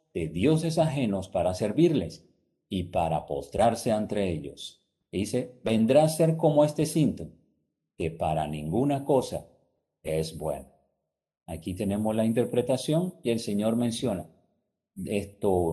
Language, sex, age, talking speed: Spanish, male, 50-69, 125 wpm